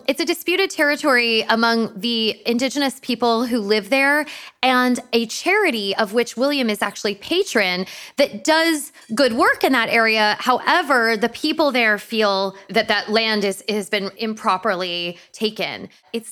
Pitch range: 210-275 Hz